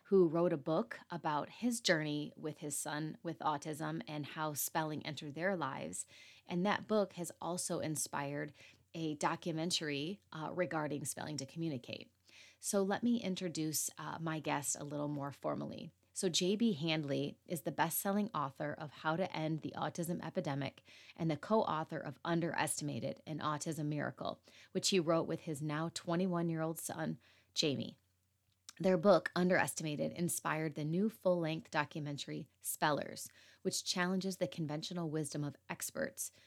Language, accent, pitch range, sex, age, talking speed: English, American, 145-180 Hz, female, 30-49, 150 wpm